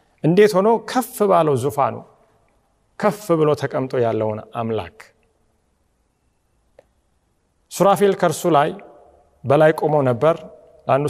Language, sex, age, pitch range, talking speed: Amharic, male, 40-59, 130-175 Hz, 90 wpm